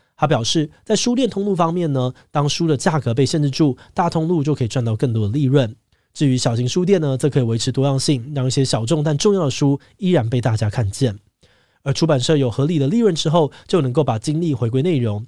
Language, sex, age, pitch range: Chinese, male, 20-39, 120-160 Hz